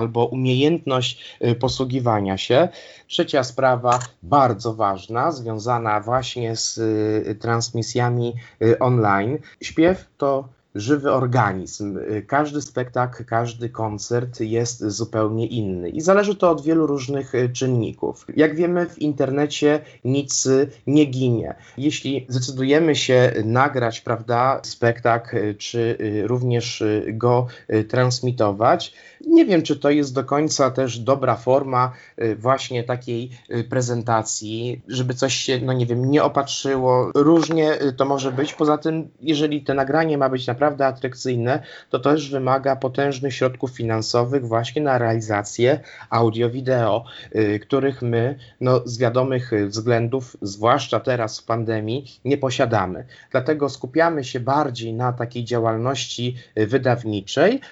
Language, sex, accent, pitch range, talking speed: Polish, male, native, 115-140 Hz, 115 wpm